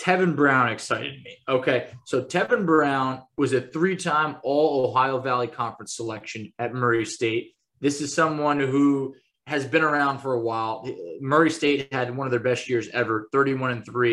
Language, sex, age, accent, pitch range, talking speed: English, male, 20-39, American, 130-170 Hz, 160 wpm